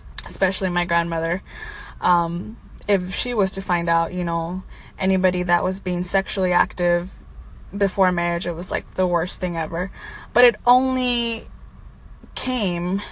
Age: 10-29